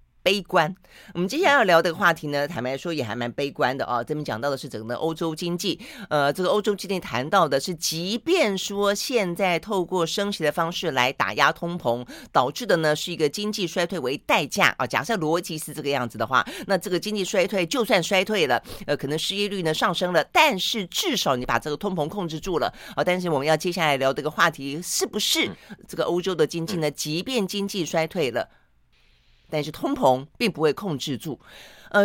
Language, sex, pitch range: Chinese, female, 145-200 Hz